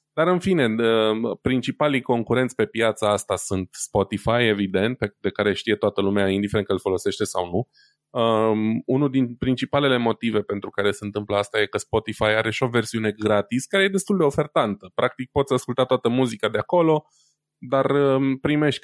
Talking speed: 170 wpm